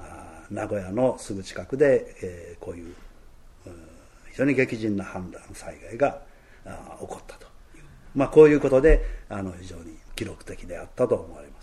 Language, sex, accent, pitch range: Japanese, male, native, 95-145 Hz